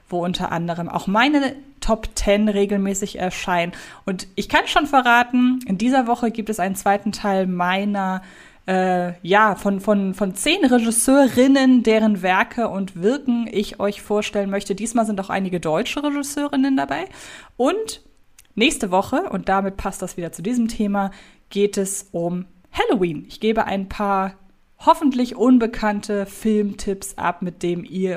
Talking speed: 150 wpm